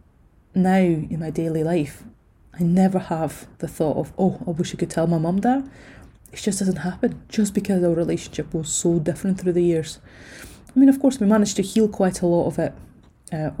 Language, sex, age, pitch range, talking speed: English, female, 20-39, 155-180 Hz, 210 wpm